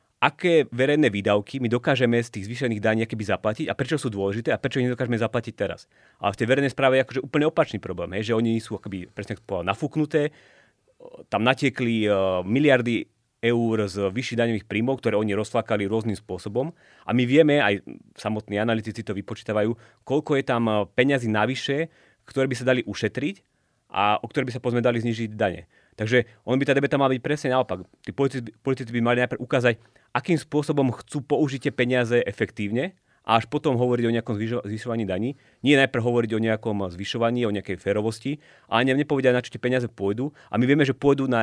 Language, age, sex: Slovak, 30-49, male